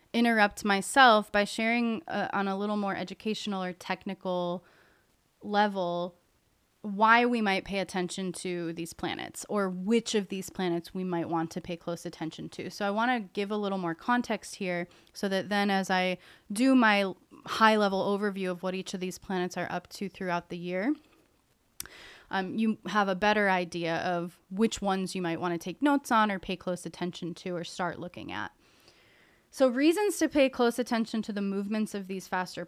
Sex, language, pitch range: female, English, 180-215 Hz